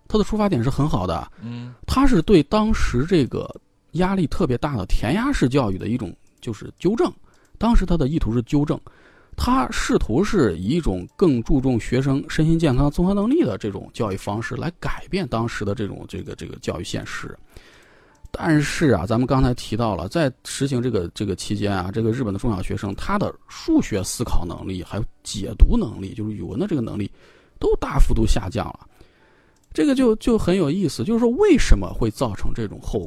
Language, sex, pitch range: Chinese, male, 105-170 Hz